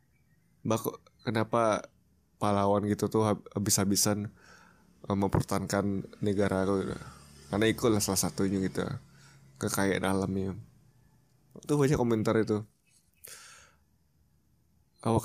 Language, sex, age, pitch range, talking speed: Indonesian, male, 20-39, 100-120 Hz, 75 wpm